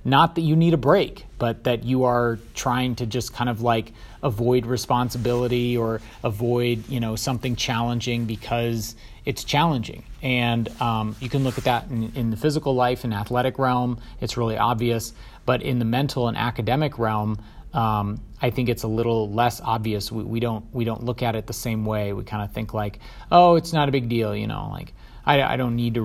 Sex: male